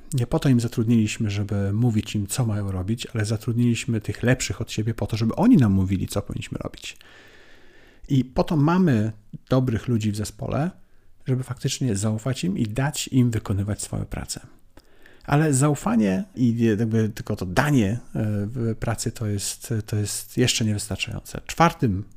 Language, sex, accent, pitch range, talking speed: Polish, male, native, 105-130 Hz, 155 wpm